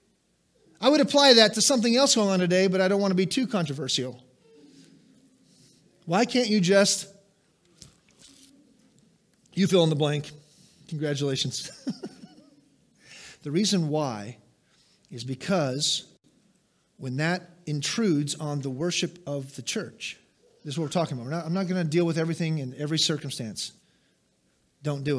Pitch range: 145-185 Hz